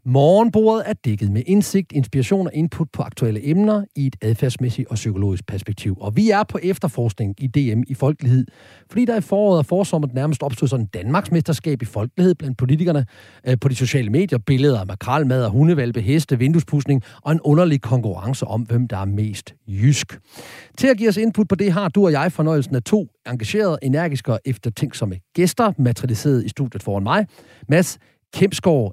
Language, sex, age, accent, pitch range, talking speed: Danish, male, 40-59, native, 115-160 Hz, 180 wpm